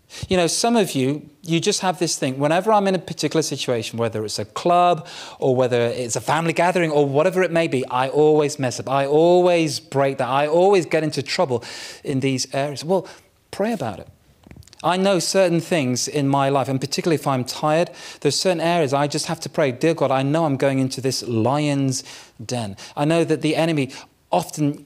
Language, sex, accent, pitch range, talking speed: English, male, British, 130-165 Hz, 210 wpm